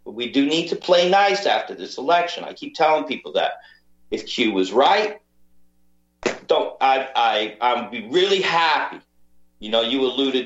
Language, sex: English, male